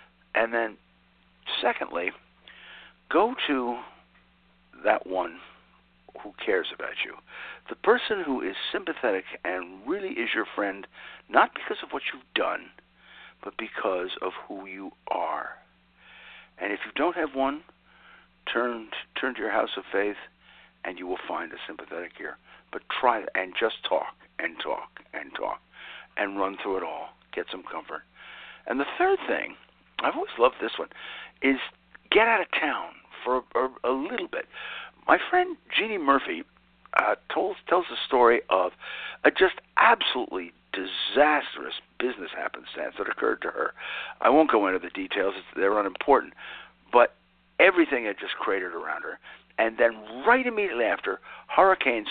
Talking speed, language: 150 wpm, English